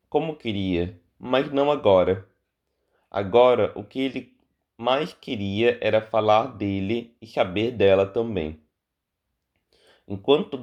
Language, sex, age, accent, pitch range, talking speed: Portuguese, male, 20-39, Brazilian, 90-120 Hz, 105 wpm